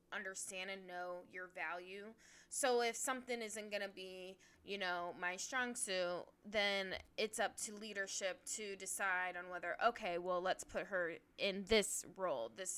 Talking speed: 160 wpm